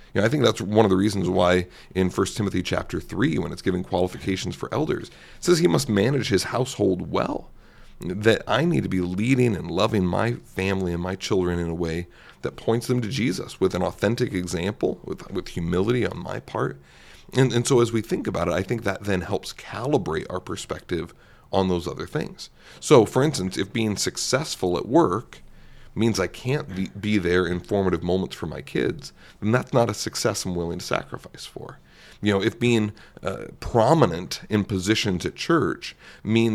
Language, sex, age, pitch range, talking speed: English, male, 40-59, 90-110 Hz, 200 wpm